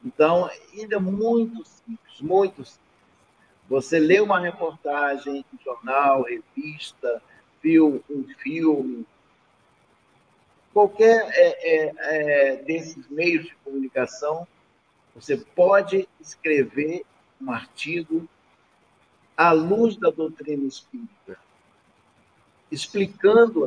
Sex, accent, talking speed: male, Brazilian, 85 wpm